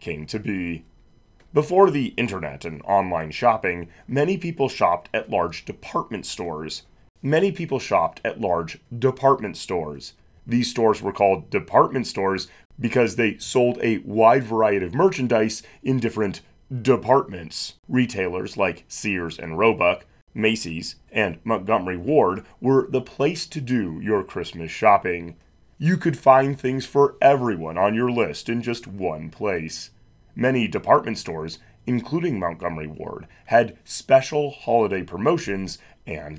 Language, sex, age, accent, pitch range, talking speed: English, male, 30-49, American, 90-135 Hz, 135 wpm